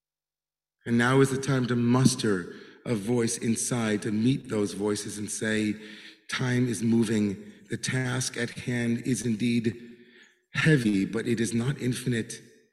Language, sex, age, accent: English, male, 40-59, American